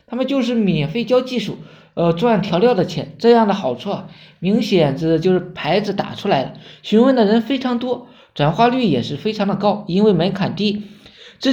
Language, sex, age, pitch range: Chinese, male, 20-39, 170-220 Hz